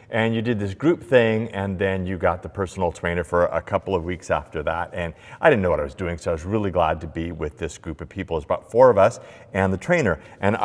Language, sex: English, male